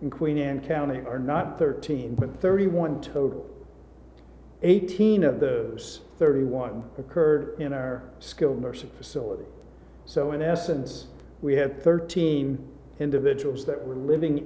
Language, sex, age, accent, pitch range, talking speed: English, male, 50-69, American, 130-155 Hz, 125 wpm